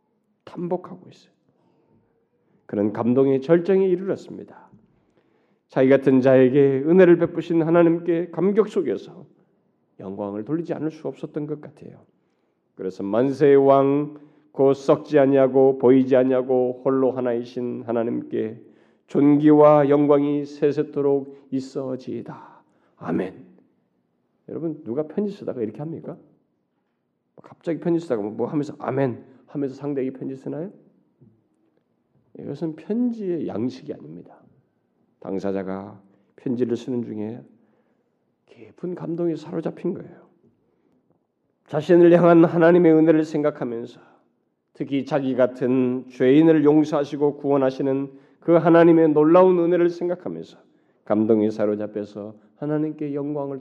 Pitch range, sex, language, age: 130-165 Hz, male, Korean, 40-59